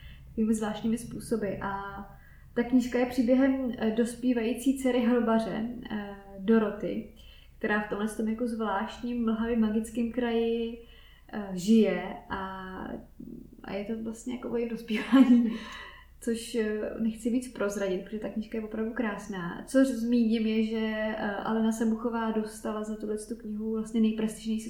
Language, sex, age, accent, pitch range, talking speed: Czech, female, 20-39, native, 200-230 Hz, 120 wpm